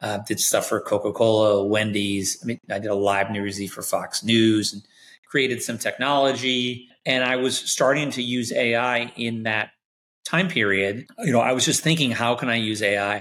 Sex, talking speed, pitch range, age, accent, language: male, 190 wpm, 105-130 Hz, 30-49, American, English